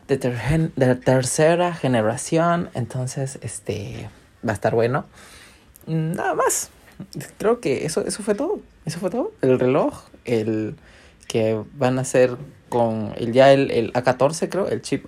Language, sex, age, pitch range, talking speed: Spanish, male, 20-39, 115-150 Hz, 155 wpm